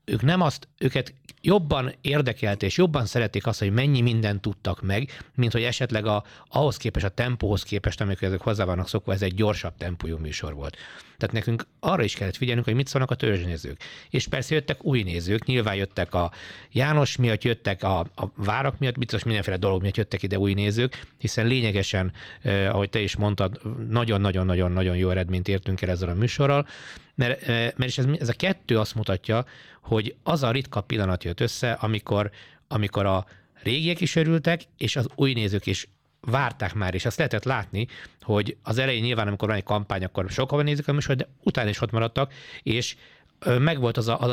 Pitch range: 100-130 Hz